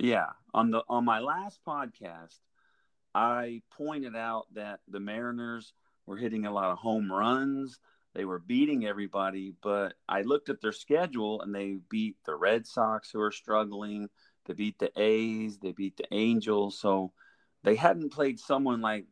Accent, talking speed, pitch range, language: American, 165 wpm, 95-120 Hz, English